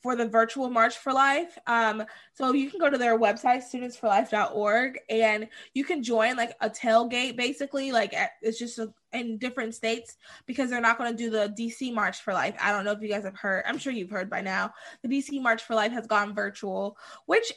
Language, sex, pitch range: English, female, 210-250 Hz